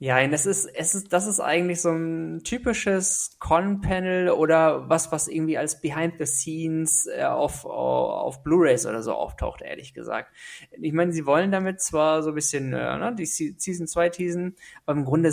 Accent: German